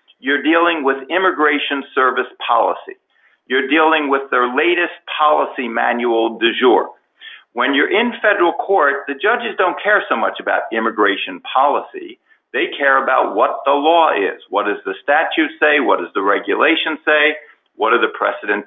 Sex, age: male, 50-69